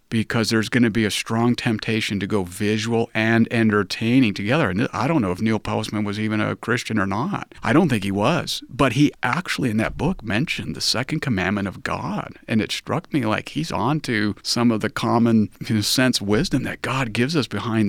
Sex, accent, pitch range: male, American, 110-140 Hz